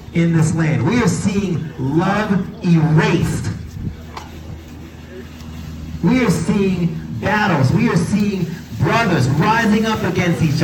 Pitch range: 120-195 Hz